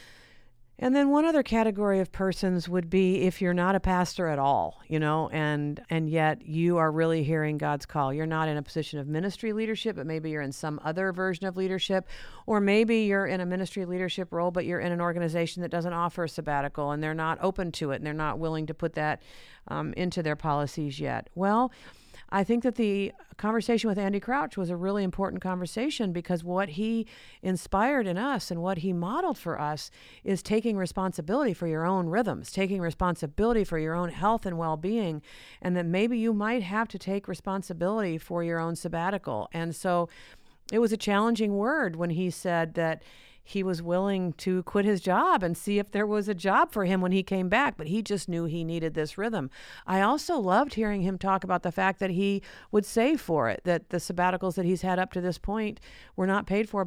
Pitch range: 165-200 Hz